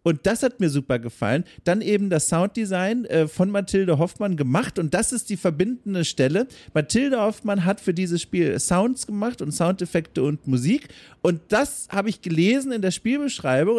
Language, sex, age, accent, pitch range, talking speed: German, male, 40-59, German, 140-195 Hz, 175 wpm